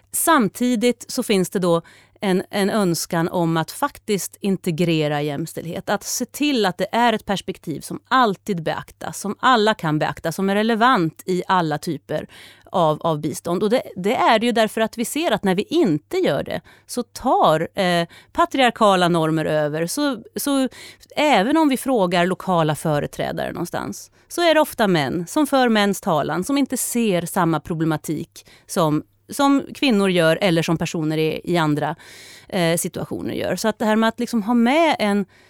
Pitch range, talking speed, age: 170-240 Hz, 170 wpm, 30-49